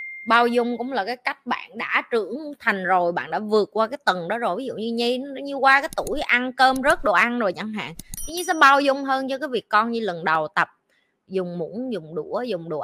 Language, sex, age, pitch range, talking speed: Vietnamese, female, 20-39, 195-260 Hz, 265 wpm